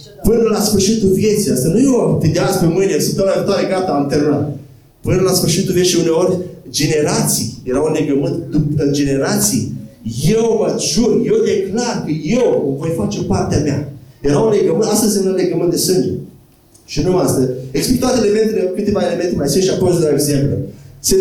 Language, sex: Romanian, male